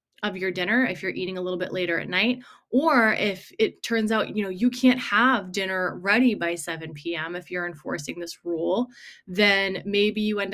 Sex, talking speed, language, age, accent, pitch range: female, 200 wpm, English, 20-39, American, 180-230 Hz